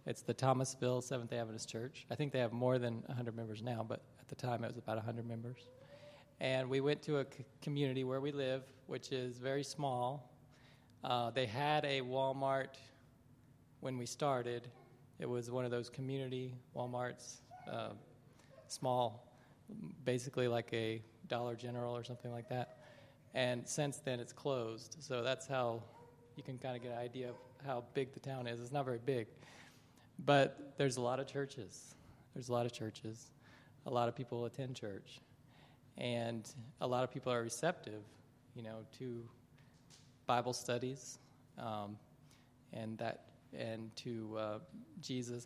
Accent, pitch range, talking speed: American, 120-135 Hz, 165 wpm